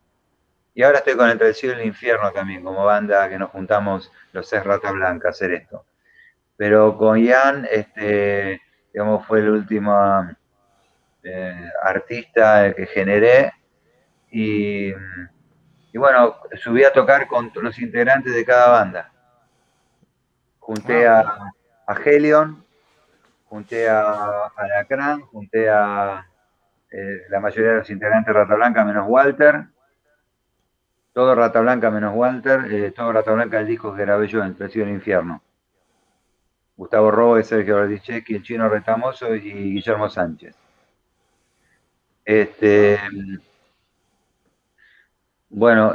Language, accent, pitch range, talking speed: Spanish, Argentinian, 100-120 Hz, 130 wpm